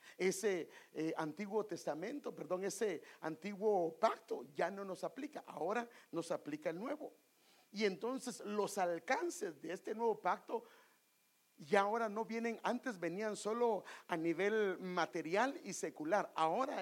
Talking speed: 135 wpm